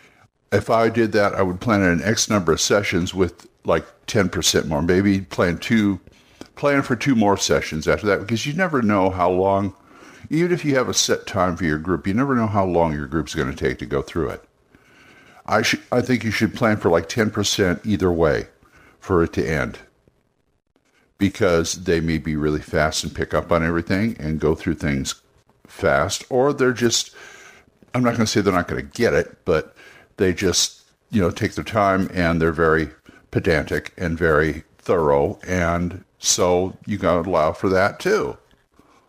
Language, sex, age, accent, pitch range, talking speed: English, male, 60-79, American, 85-115 Hz, 195 wpm